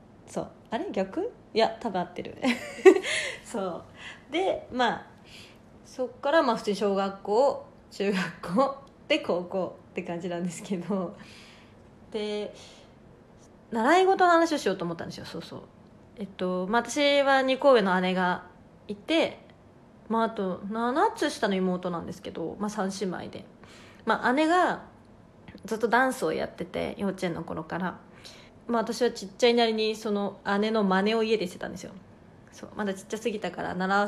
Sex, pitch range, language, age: female, 195-255 Hz, Japanese, 20-39